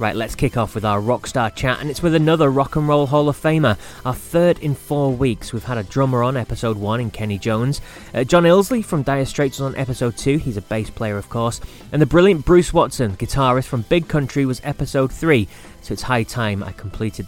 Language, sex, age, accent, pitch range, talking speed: English, male, 30-49, British, 110-145 Hz, 235 wpm